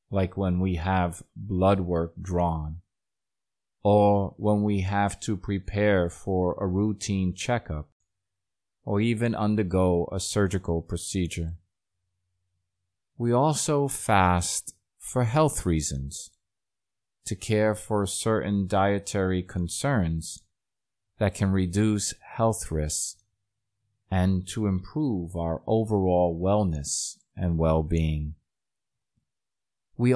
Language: English